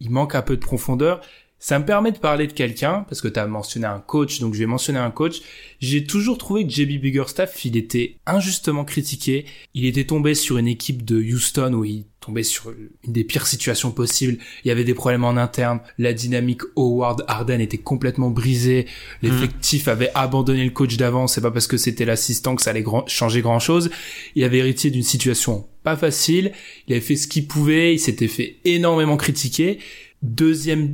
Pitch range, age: 120-150 Hz, 20-39